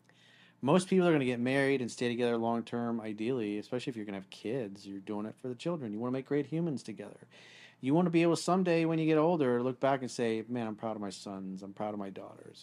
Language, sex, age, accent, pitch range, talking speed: English, male, 40-59, American, 105-140 Hz, 280 wpm